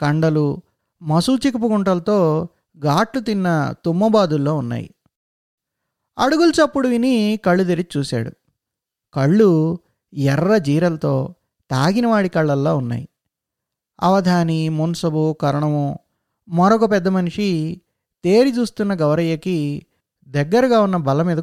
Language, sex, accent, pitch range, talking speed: Telugu, male, native, 155-220 Hz, 85 wpm